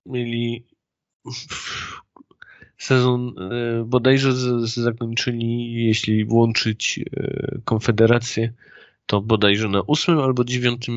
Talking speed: 95 wpm